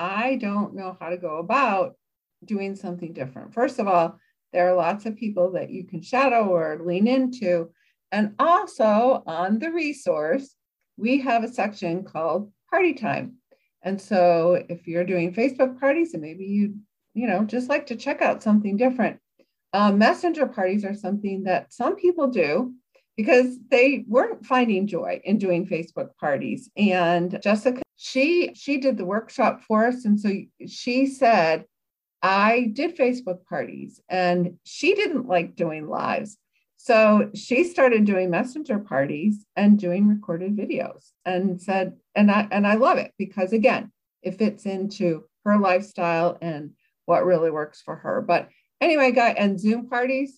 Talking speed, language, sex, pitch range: 160 wpm, English, female, 180-250 Hz